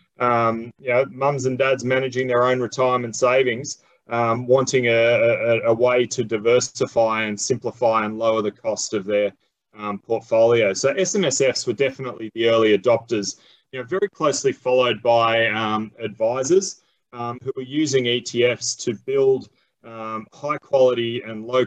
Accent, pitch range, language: Australian, 115-130 Hz, English